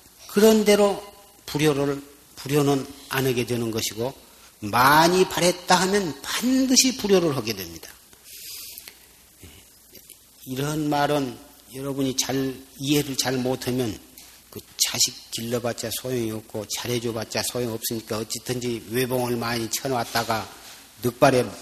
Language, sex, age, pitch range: Korean, male, 40-59, 120-155 Hz